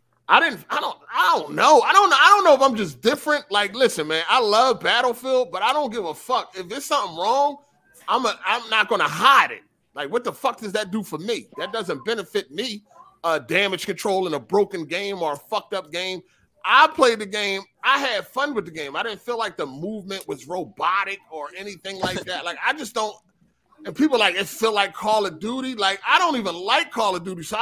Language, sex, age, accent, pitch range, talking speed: English, male, 30-49, American, 160-245 Hz, 235 wpm